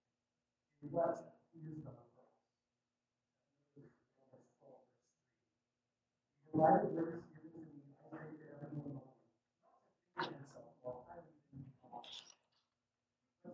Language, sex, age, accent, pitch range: English, male, 50-69, American, 125-170 Hz